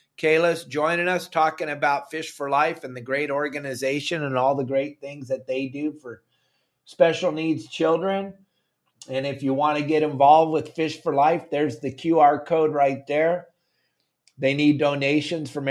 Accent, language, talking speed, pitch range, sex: American, English, 170 wpm, 130-160 Hz, male